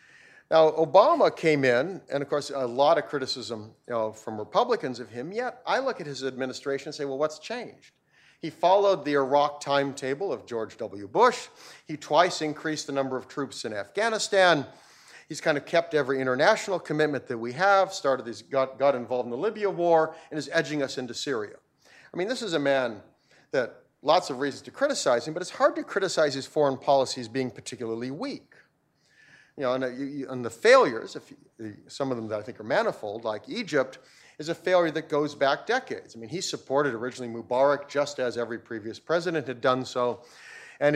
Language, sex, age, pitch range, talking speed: English, male, 40-59, 125-155 Hz, 190 wpm